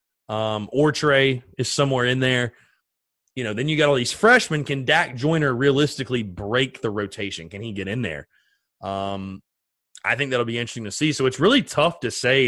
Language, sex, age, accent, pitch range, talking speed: English, male, 30-49, American, 115-165 Hz, 195 wpm